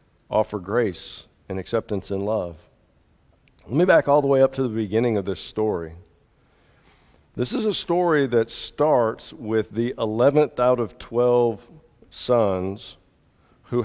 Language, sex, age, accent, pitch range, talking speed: English, male, 50-69, American, 105-145 Hz, 145 wpm